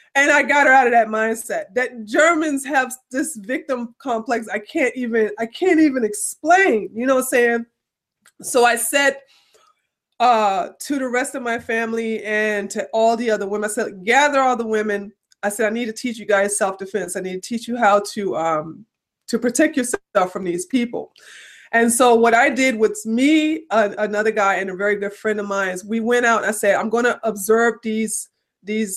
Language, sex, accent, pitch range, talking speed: English, female, American, 210-250 Hz, 210 wpm